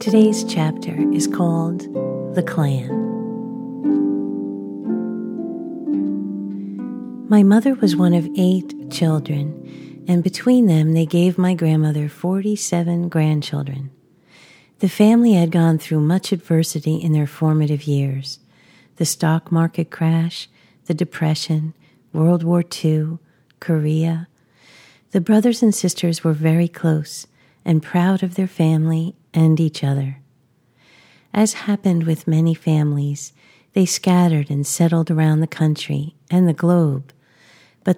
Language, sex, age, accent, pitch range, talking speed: English, female, 50-69, American, 150-175 Hz, 115 wpm